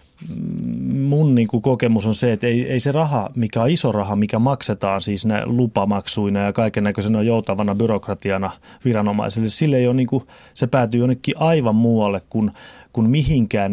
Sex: male